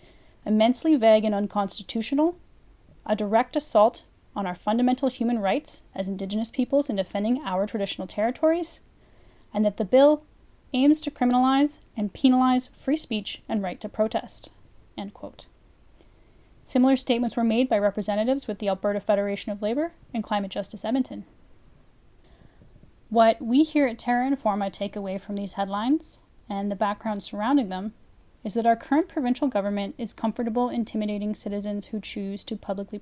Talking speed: 150 wpm